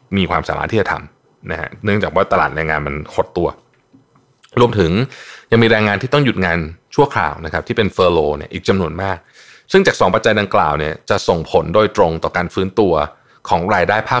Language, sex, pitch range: Thai, male, 85-125 Hz